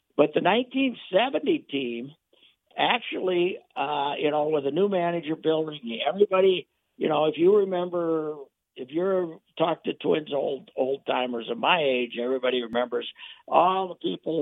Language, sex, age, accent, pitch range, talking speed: English, male, 60-79, American, 115-160 Hz, 150 wpm